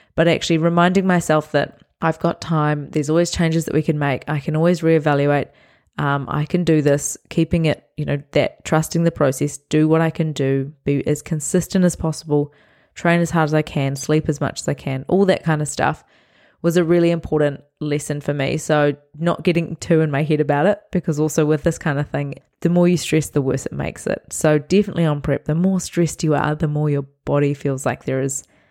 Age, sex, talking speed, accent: 20-39, female, 225 wpm, Australian